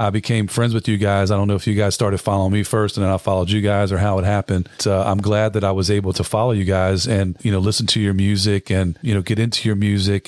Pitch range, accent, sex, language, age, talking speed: 100-110 Hz, American, male, English, 40-59, 300 wpm